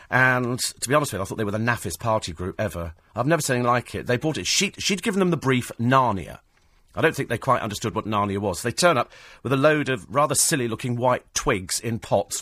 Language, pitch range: English, 100-135 Hz